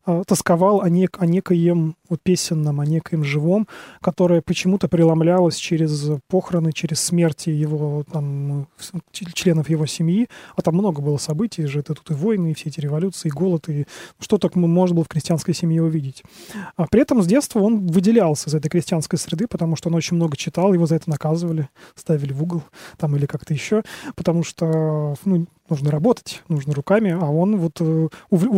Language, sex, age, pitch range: Russian, male, 20-39, 155-190 Hz